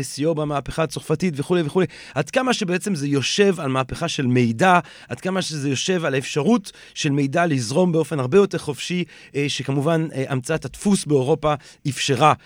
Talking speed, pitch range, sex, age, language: 155 wpm, 130-175 Hz, male, 30-49, Hebrew